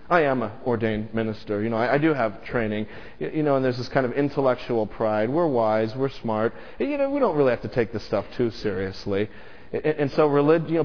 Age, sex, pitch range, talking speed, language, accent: 40-59, male, 100-145 Hz, 220 wpm, English, American